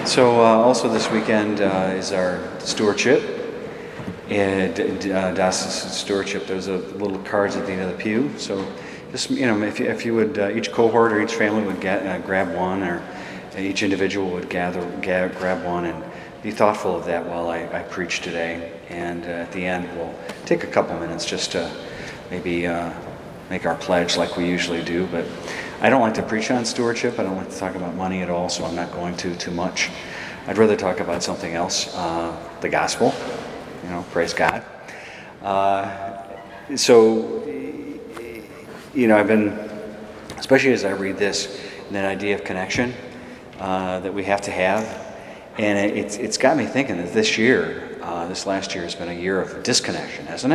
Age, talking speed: 40-59, 195 wpm